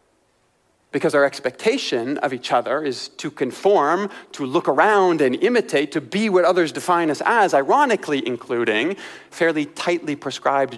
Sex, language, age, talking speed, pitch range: male, English, 40-59, 145 wpm, 130-175 Hz